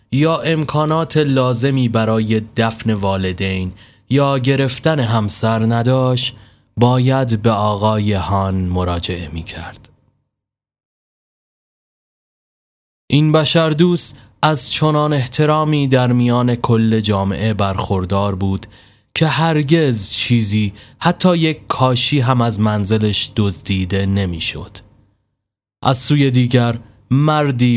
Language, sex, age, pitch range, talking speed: Persian, male, 20-39, 105-130 Hz, 95 wpm